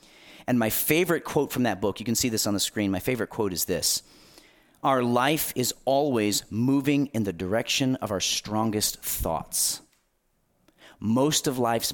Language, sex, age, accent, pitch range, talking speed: English, male, 40-59, American, 95-130 Hz, 170 wpm